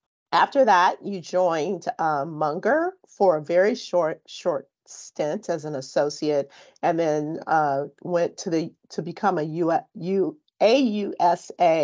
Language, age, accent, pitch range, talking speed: English, 40-59, American, 150-185 Hz, 135 wpm